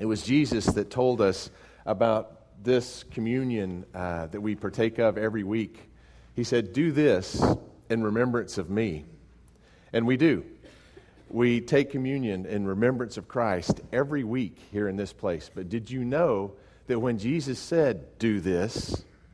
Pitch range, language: 95-120 Hz, English